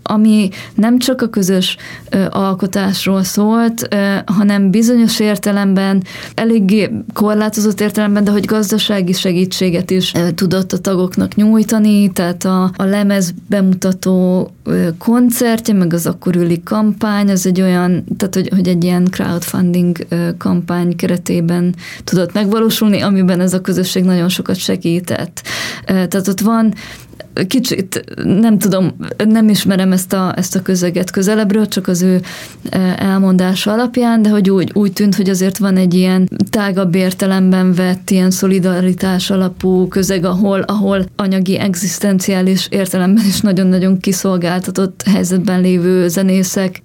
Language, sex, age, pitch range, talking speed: Hungarian, female, 20-39, 185-205 Hz, 135 wpm